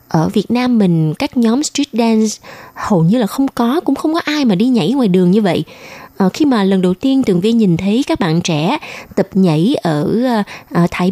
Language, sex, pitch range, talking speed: Vietnamese, female, 185-255 Hz, 215 wpm